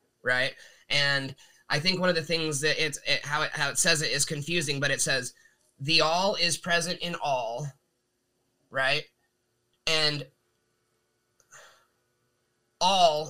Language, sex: English, male